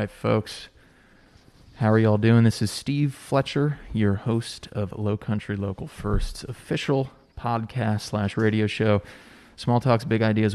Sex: male